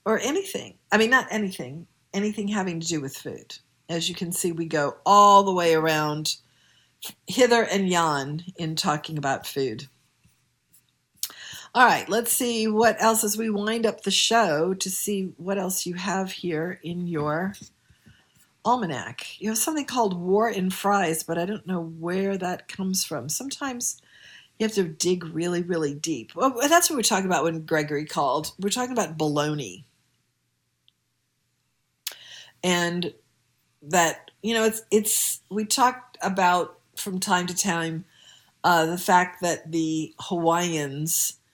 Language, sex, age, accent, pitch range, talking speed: English, female, 50-69, American, 155-195 Hz, 155 wpm